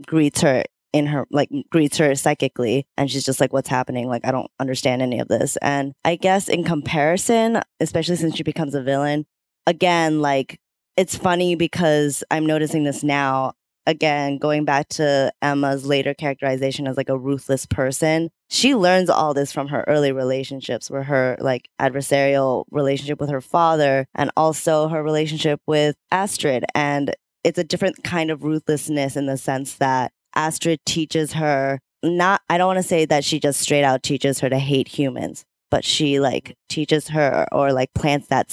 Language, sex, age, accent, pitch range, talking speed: English, female, 10-29, American, 135-155 Hz, 180 wpm